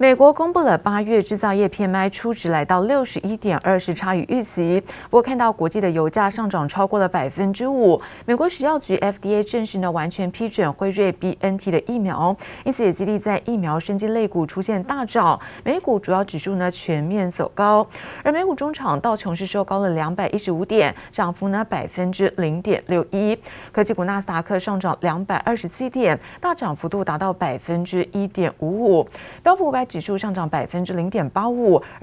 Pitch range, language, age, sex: 175-230 Hz, Chinese, 30-49, female